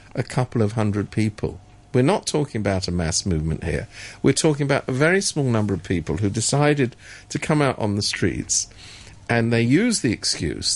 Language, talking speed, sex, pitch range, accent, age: English, 195 wpm, male, 95-125 Hz, British, 50-69